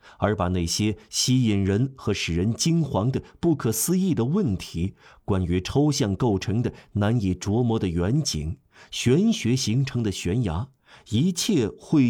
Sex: male